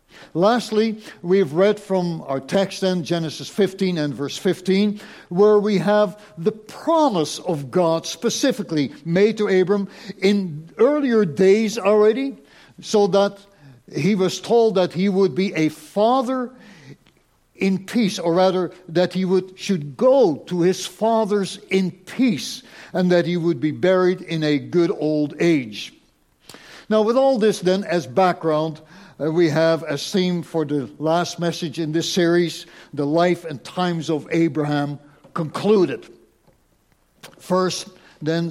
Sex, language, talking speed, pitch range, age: male, English, 140 wpm, 160-200 Hz, 60-79